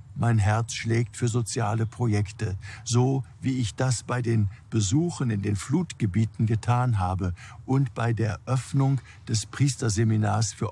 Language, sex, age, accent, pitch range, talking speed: German, male, 50-69, German, 105-120 Hz, 140 wpm